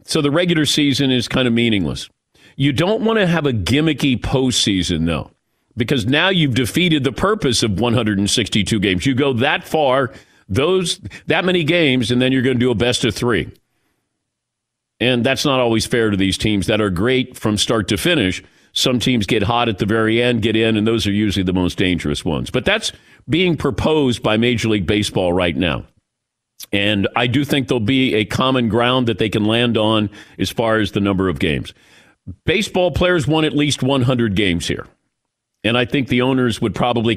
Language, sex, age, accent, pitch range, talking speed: English, male, 50-69, American, 110-145 Hz, 200 wpm